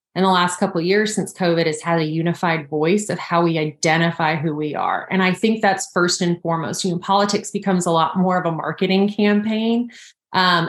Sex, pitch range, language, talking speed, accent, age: female, 170-190 Hz, English, 220 wpm, American, 30-49